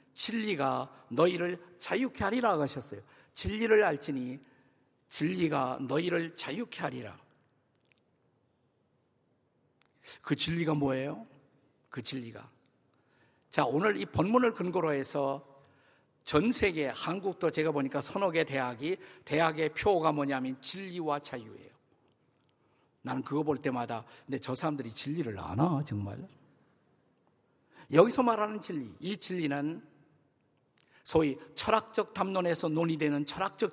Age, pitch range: 50-69, 140-205 Hz